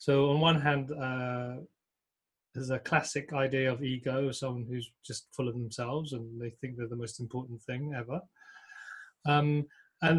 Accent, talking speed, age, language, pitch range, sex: British, 165 wpm, 30-49, English, 130-160 Hz, male